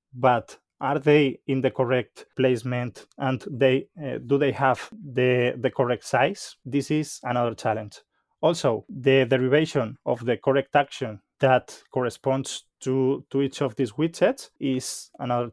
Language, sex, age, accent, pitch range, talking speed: English, male, 20-39, Spanish, 130-145 Hz, 145 wpm